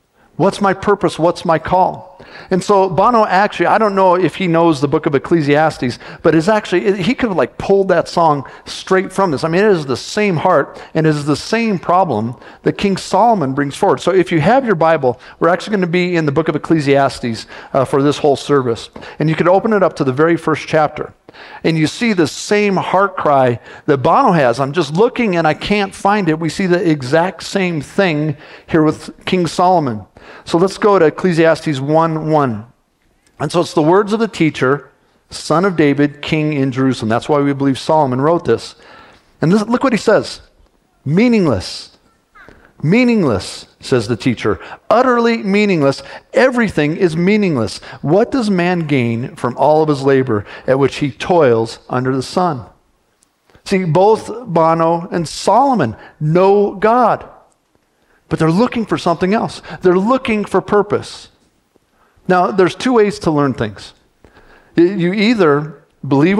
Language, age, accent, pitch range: English, 50-69, American, 145-195 Hz